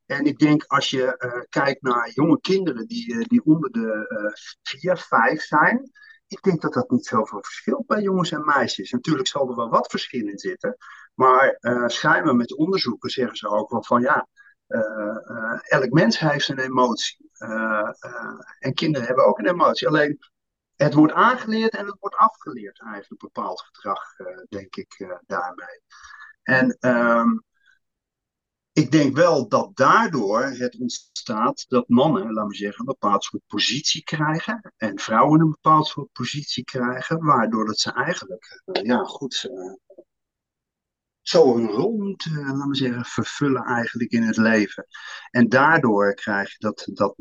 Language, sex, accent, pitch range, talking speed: Dutch, male, Dutch, 110-165 Hz, 170 wpm